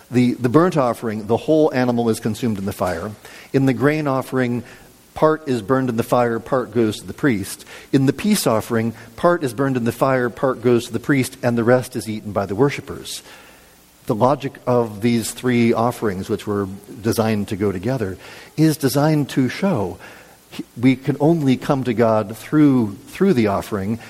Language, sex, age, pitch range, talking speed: English, male, 50-69, 105-130 Hz, 190 wpm